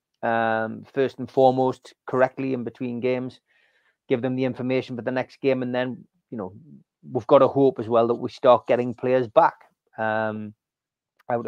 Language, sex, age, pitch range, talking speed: English, male, 30-49, 115-135 Hz, 180 wpm